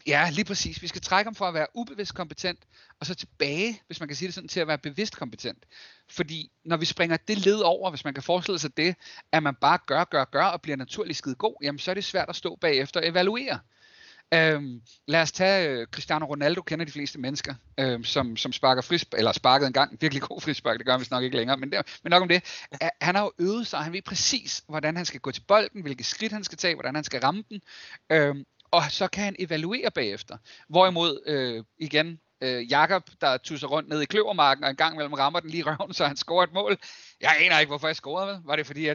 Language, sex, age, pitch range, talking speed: Danish, male, 30-49, 140-185 Hz, 255 wpm